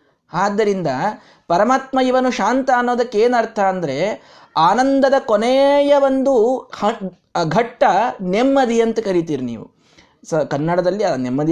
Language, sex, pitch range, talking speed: Kannada, male, 155-255 Hz, 90 wpm